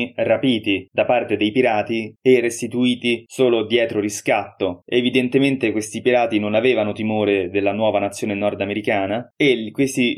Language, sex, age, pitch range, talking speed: Italian, male, 20-39, 105-125 Hz, 130 wpm